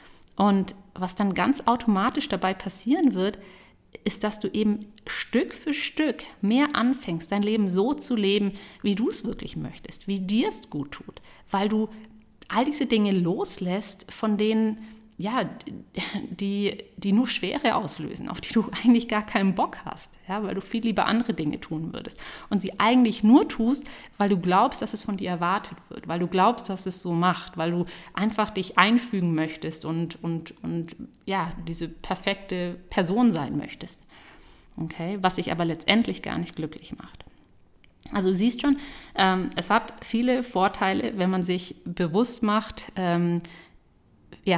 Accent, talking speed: German, 165 wpm